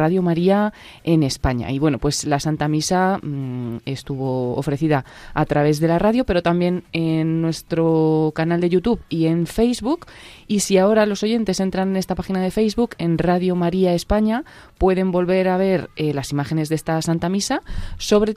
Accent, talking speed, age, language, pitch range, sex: Spanish, 180 wpm, 20-39, Spanish, 150-180 Hz, female